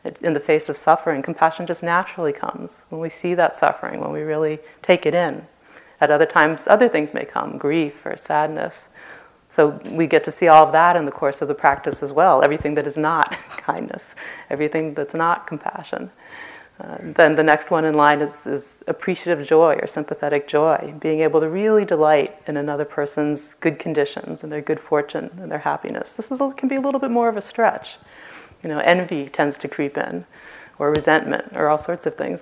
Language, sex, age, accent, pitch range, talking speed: English, female, 30-49, American, 150-195 Hz, 205 wpm